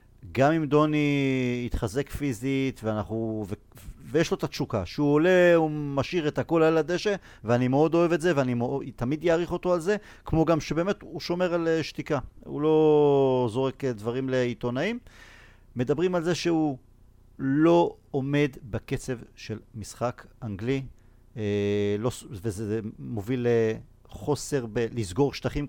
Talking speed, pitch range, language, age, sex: 140 wpm, 115-160 Hz, Hebrew, 50-69, male